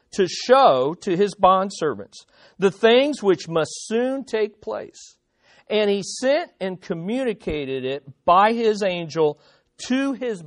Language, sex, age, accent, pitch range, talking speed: English, male, 50-69, American, 155-230 Hz, 130 wpm